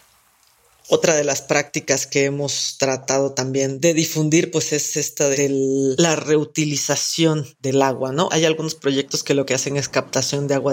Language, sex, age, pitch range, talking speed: Spanish, female, 40-59, 140-170 Hz, 170 wpm